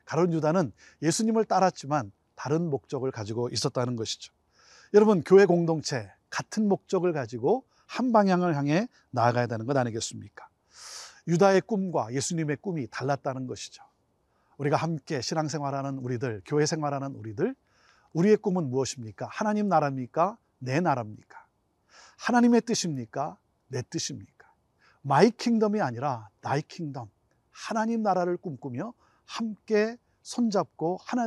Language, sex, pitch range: Korean, male, 120-180 Hz